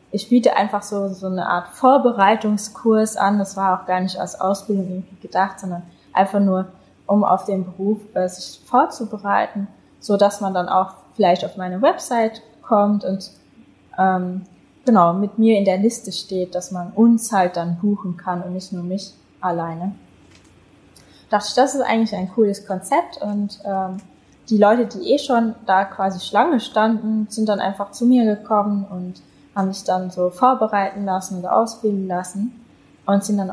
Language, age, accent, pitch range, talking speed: German, 20-39, German, 185-220 Hz, 175 wpm